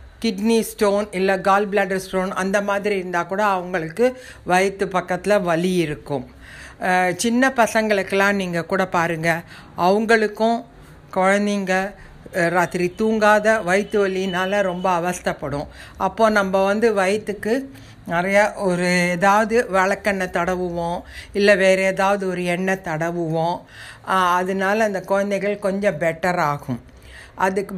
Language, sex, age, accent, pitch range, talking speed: Tamil, female, 60-79, native, 170-205 Hz, 110 wpm